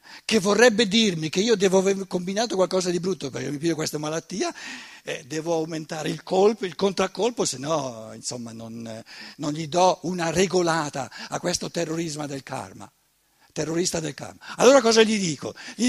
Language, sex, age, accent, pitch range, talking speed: Italian, male, 60-79, native, 155-225 Hz, 175 wpm